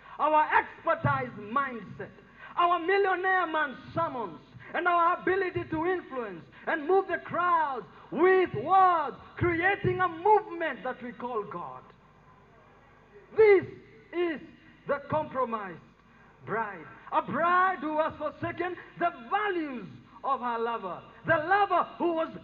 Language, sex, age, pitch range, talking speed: English, male, 50-69, 255-345 Hz, 120 wpm